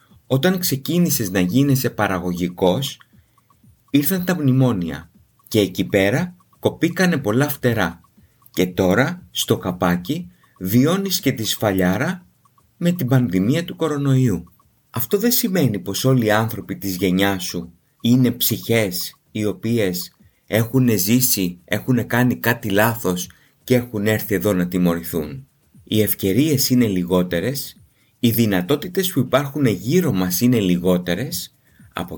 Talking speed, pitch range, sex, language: 125 wpm, 95-140 Hz, male, Greek